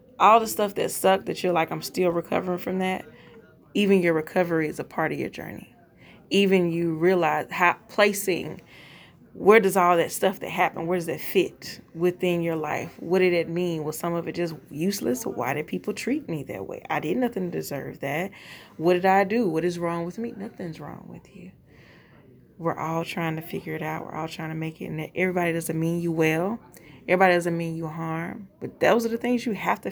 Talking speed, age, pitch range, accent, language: 220 wpm, 20-39, 165-210 Hz, American, English